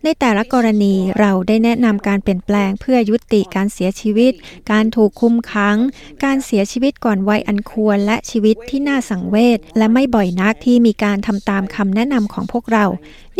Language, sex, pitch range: Thai, female, 195-245 Hz